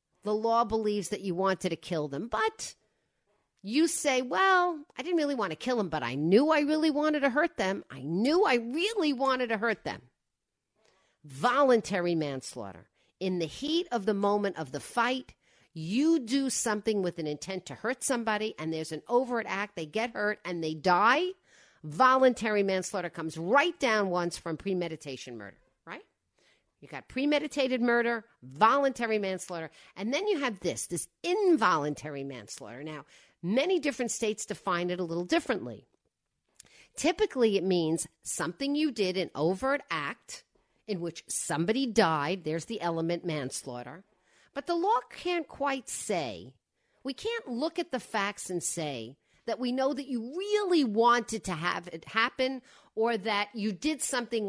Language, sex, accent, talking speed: English, female, American, 160 wpm